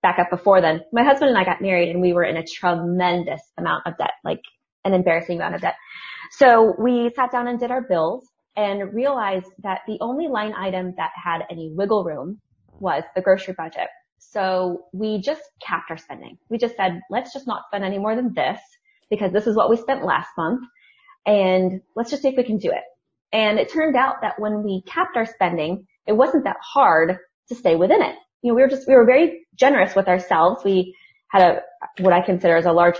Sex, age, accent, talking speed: female, 20-39, American, 220 wpm